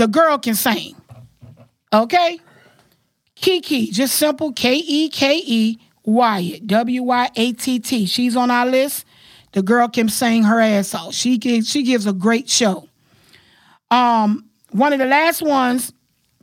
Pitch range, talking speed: 220-290 Hz, 155 wpm